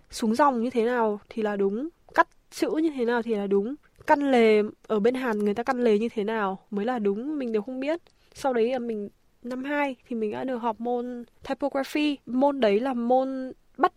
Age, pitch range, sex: 10-29, 215-265 Hz, female